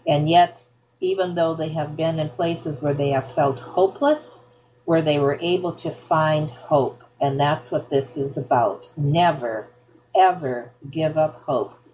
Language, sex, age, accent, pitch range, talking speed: English, female, 50-69, American, 135-170 Hz, 160 wpm